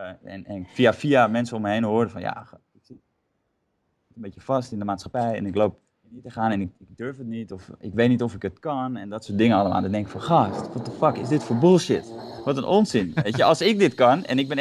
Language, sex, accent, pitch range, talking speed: Dutch, male, Dutch, 105-135 Hz, 285 wpm